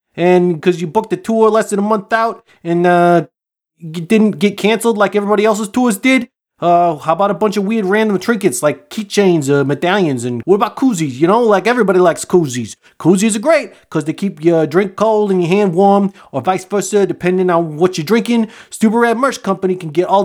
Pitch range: 165-210 Hz